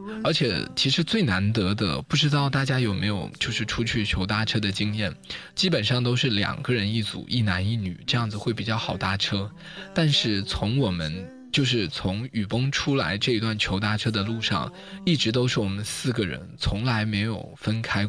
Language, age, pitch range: Chinese, 20-39, 105-135 Hz